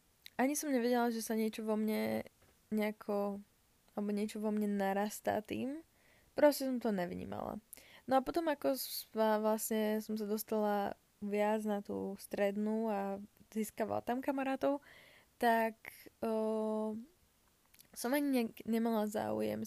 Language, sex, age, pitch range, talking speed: Slovak, female, 20-39, 205-240 Hz, 130 wpm